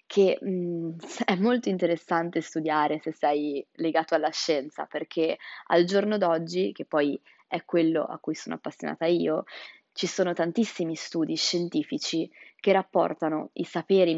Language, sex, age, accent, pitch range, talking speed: Italian, female, 20-39, native, 160-190 Hz, 140 wpm